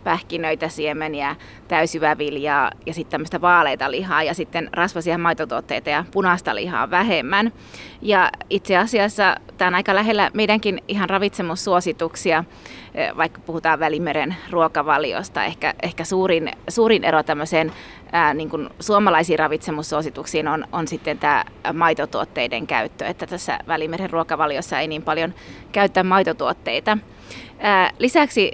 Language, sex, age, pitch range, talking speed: Finnish, female, 20-39, 155-185 Hz, 115 wpm